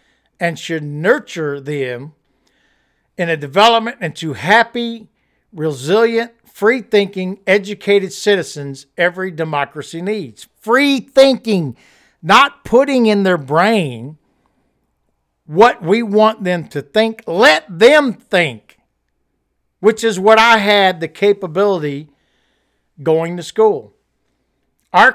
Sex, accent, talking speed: male, American, 105 wpm